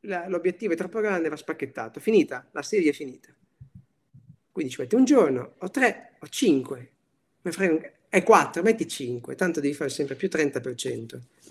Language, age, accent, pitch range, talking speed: Italian, 40-59, native, 130-215 Hz, 160 wpm